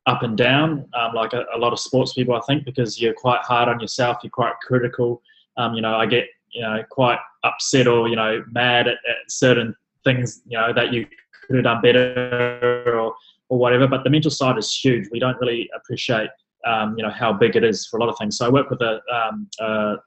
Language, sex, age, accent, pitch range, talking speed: English, male, 20-39, Australian, 115-130 Hz, 235 wpm